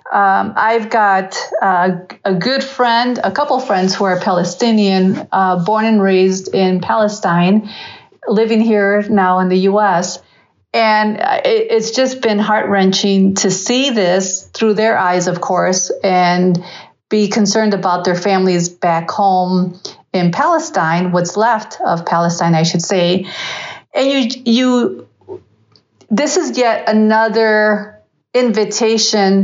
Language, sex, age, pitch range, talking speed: English, female, 40-59, 185-225 Hz, 135 wpm